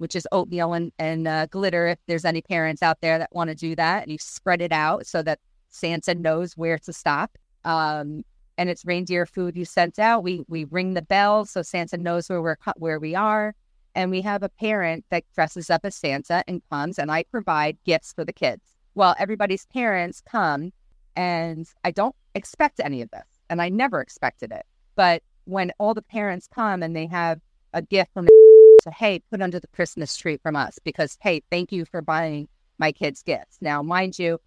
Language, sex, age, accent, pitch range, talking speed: English, female, 40-59, American, 160-195 Hz, 210 wpm